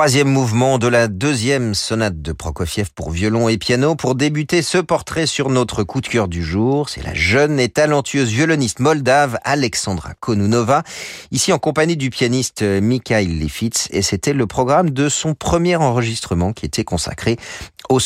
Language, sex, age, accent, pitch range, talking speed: French, male, 40-59, French, 95-135 Hz, 170 wpm